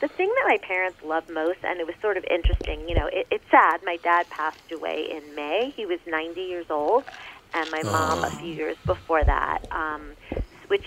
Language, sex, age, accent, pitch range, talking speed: English, female, 40-59, American, 165-200 Hz, 210 wpm